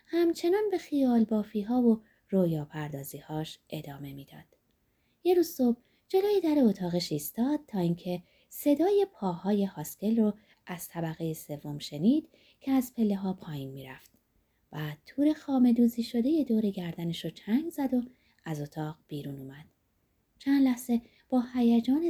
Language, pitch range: Persian, 165-265 Hz